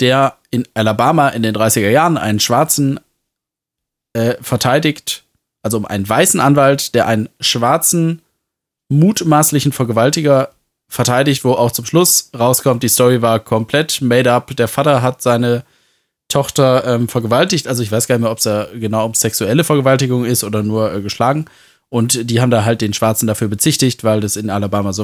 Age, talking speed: 20-39, 170 wpm